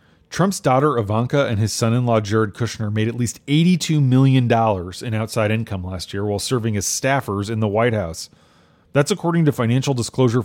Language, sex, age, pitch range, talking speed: English, male, 30-49, 110-140 Hz, 180 wpm